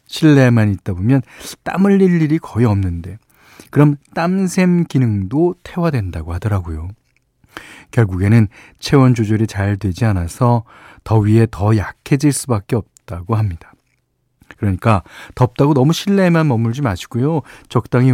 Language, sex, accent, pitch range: Korean, male, native, 100-145 Hz